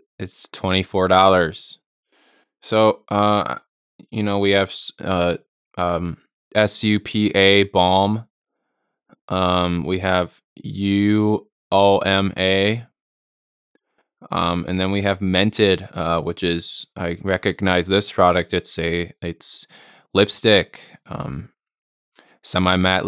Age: 20-39